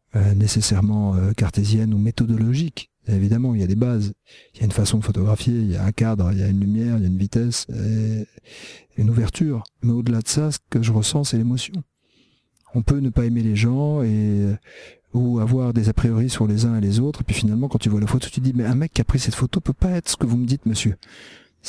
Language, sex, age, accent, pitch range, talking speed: French, male, 50-69, French, 110-130 Hz, 260 wpm